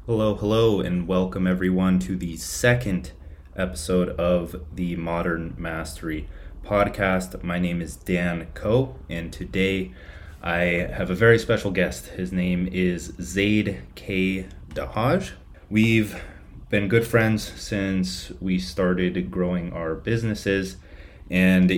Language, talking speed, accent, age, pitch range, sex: English, 120 wpm, American, 30-49, 80-95 Hz, male